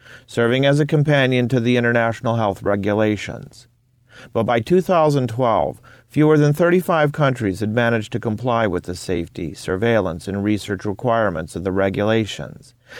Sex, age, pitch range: male, 40-59, 105-130 Hz